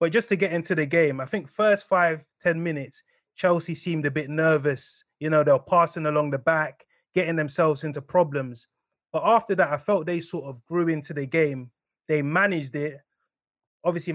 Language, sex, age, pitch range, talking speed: English, male, 20-39, 145-175 Hz, 195 wpm